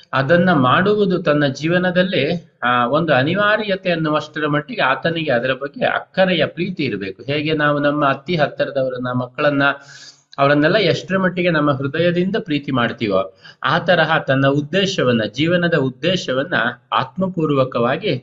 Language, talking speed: Kannada, 115 wpm